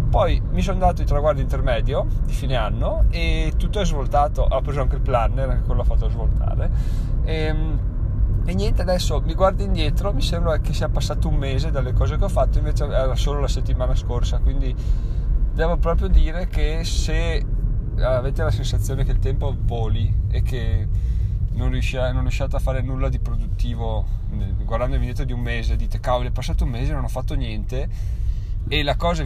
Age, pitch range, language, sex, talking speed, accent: 20-39, 100-125 Hz, Italian, male, 190 wpm, native